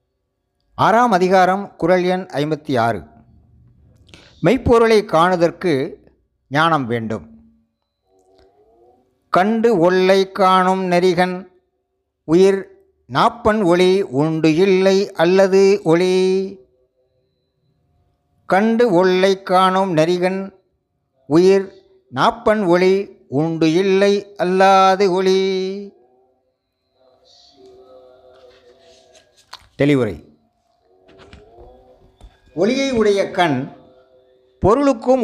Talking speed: 60 wpm